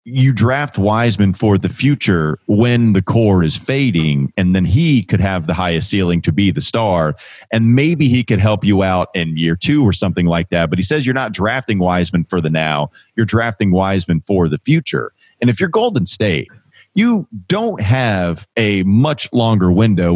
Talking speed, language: 195 wpm, English